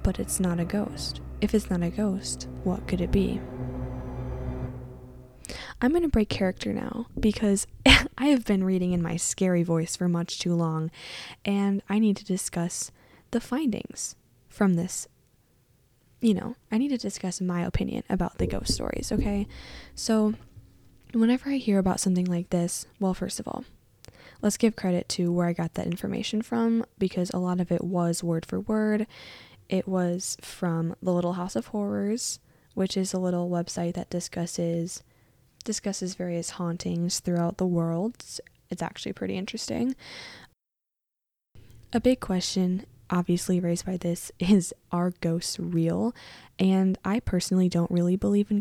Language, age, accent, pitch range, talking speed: English, 10-29, American, 170-205 Hz, 160 wpm